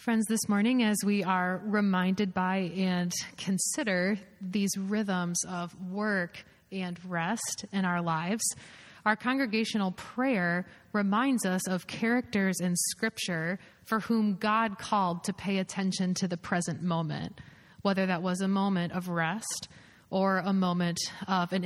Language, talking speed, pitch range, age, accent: English, 140 wpm, 175-205 Hz, 20-39, American